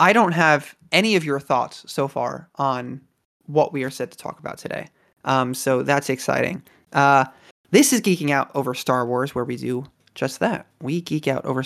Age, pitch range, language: 30-49, 135-170 Hz, English